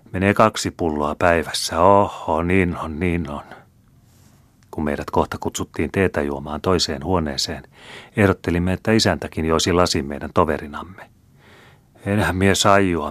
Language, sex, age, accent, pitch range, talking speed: Finnish, male, 40-59, native, 80-100 Hz, 125 wpm